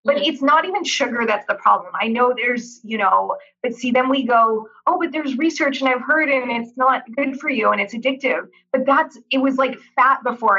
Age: 20-39